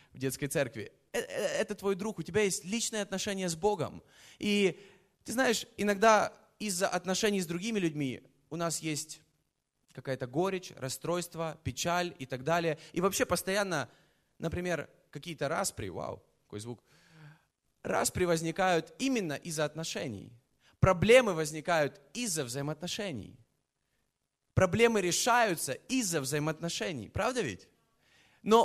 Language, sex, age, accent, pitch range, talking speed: Russian, male, 20-39, native, 165-225 Hz, 120 wpm